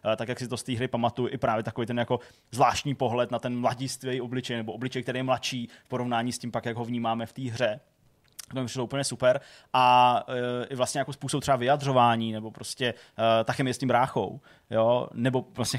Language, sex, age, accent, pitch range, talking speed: Czech, male, 20-39, native, 110-125 Hz, 225 wpm